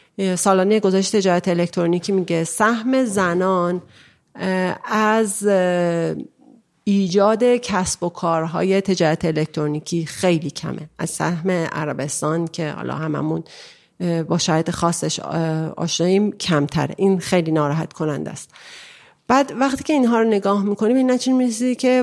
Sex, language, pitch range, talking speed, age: female, Persian, 170-210 Hz, 115 wpm, 40-59